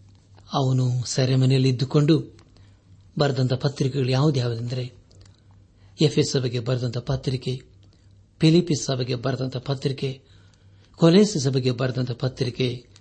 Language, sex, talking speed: Kannada, male, 85 wpm